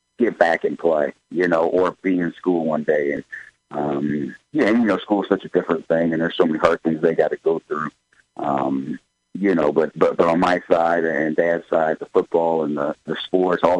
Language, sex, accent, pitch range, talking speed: English, male, American, 80-95 Hz, 235 wpm